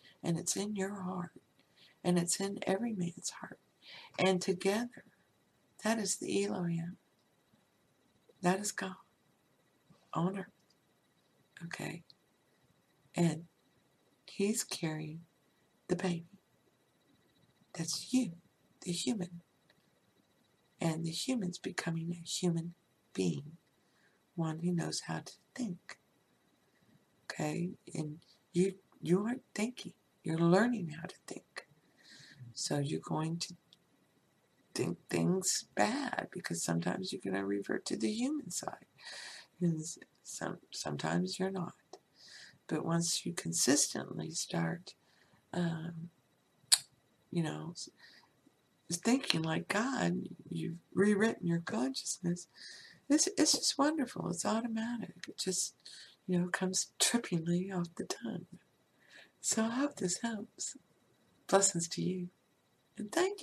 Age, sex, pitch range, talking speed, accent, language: 60-79, female, 165-200 Hz, 110 wpm, American, English